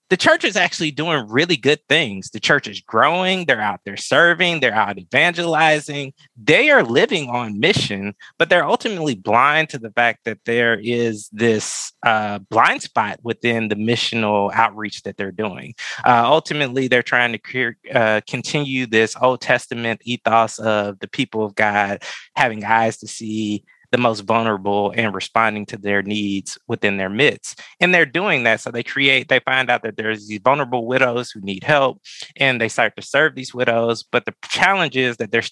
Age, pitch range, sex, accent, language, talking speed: 20-39, 110-135 Hz, male, American, English, 180 wpm